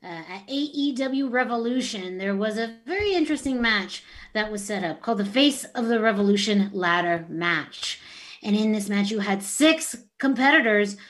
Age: 30-49